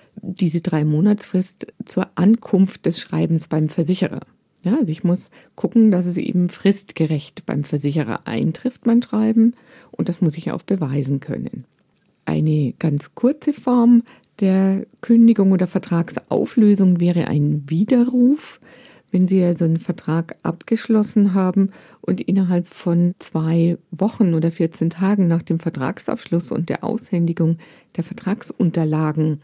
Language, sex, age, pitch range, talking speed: German, female, 50-69, 160-215 Hz, 130 wpm